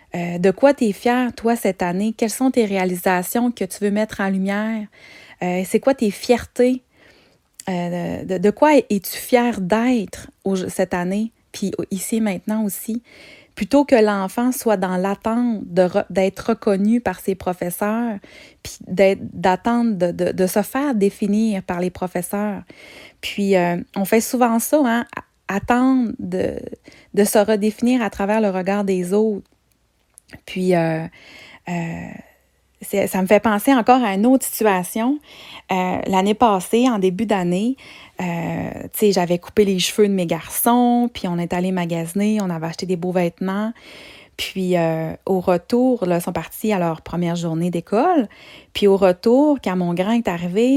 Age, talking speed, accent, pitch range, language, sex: 30-49, 165 wpm, Canadian, 185-240 Hz, French, female